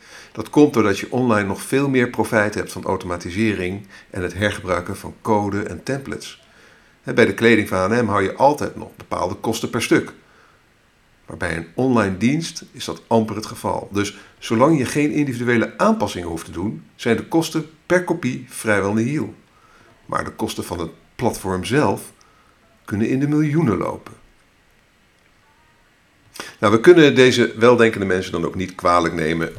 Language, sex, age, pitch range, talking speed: Dutch, male, 50-69, 90-120 Hz, 165 wpm